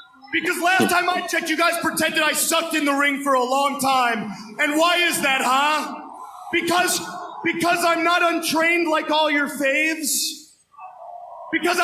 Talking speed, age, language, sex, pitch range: 160 wpm, 30-49, English, male, 310-370 Hz